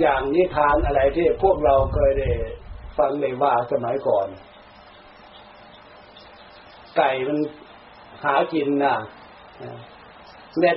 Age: 60-79